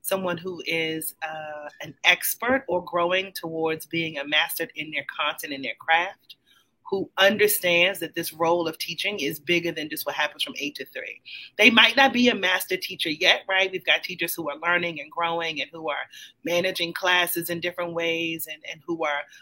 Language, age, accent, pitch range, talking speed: English, 30-49, American, 165-195 Hz, 200 wpm